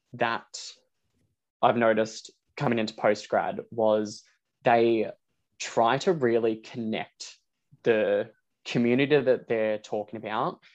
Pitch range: 110-125 Hz